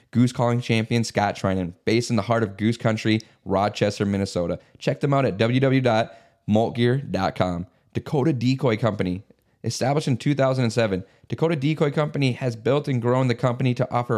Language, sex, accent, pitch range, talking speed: English, male, American, 115-140 Hz, 150 wpm